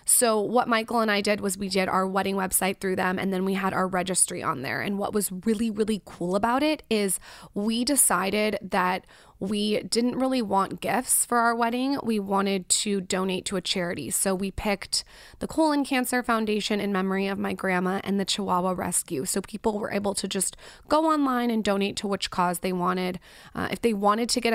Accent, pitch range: American, 190-225 Hz